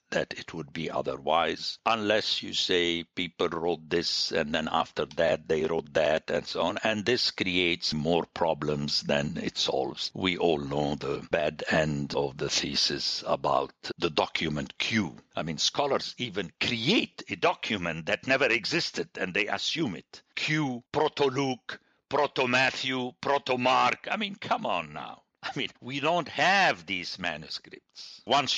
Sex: male